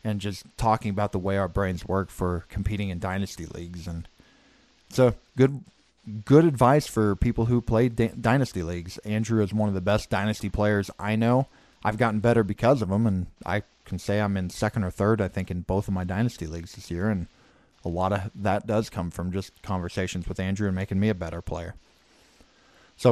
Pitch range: 95-120 Hz